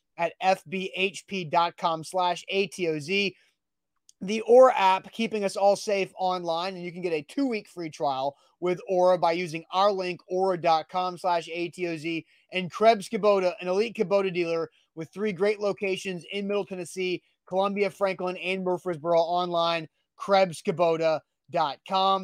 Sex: male